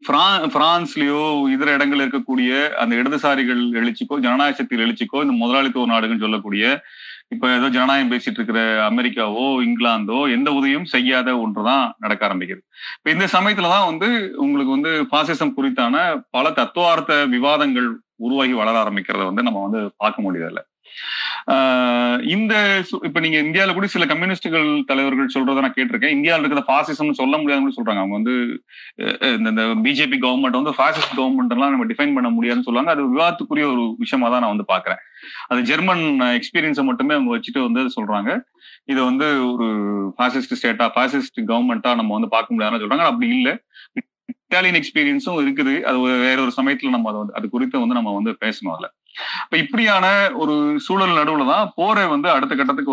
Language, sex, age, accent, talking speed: Tamil, male, 30-49, native, 150 wpm